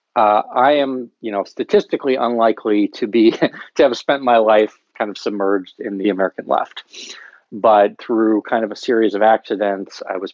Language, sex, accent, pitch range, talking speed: English, male, American, 100-125 Hz, 180 wpm